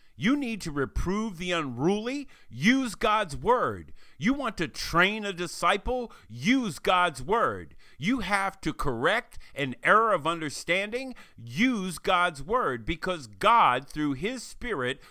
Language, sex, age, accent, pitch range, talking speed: English, male, 50-69, American, 135-215 Hz, 135 wpm